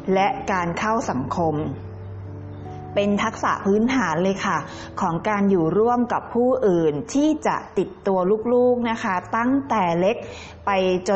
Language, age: Thai, 20-39